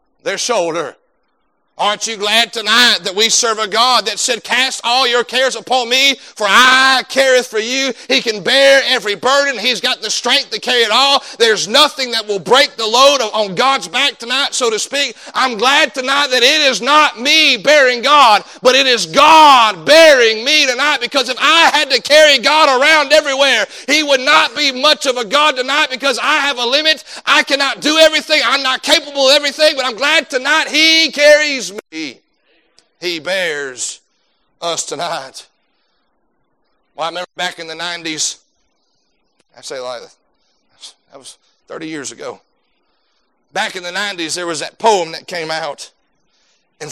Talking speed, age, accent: 175 wpm, 40-59, American